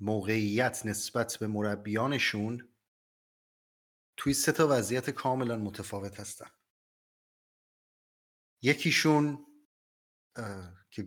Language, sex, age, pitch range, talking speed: Persian, male, 30-49, 110-135 Hz, 70 wpm